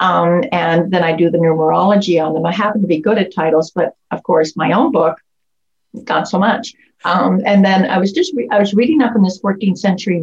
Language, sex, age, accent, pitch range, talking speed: English, female, 50-69, American, 165-210 Hz, 235 wpm